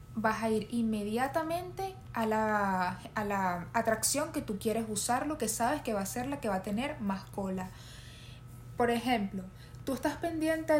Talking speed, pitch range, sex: 180 wpm, 200-260 Hz, female